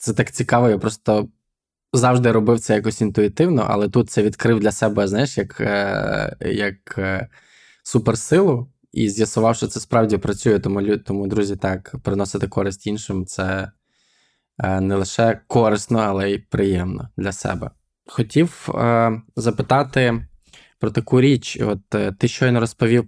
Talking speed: 140 wpm